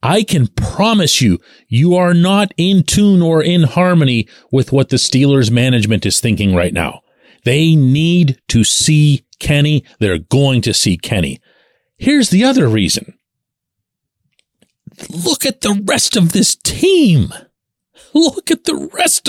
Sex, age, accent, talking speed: male, 40-59, American, 145 wpm